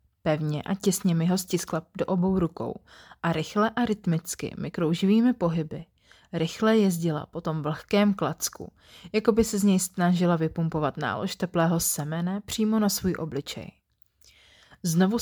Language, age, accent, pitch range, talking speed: Czech, 30-49, native, 155-200 Hz, 140 wpm